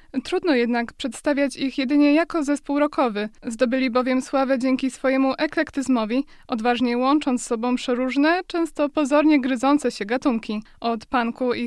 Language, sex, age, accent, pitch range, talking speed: Polish, female, 20-39, native, 250-300 Hz, 140 wpm